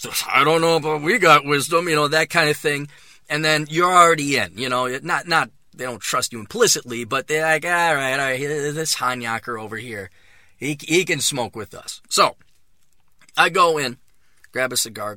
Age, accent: 30-49, American